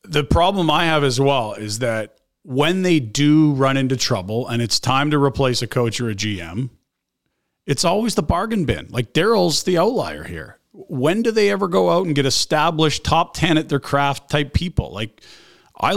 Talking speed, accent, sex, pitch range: 195 wpm, American, male, 125-160 Hz